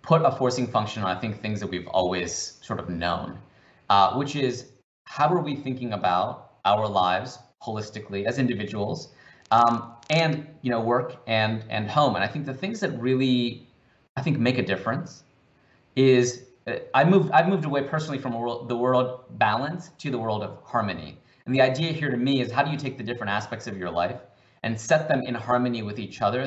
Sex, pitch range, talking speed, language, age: male, 115-140 Hz, 205 wpm, English, 30-49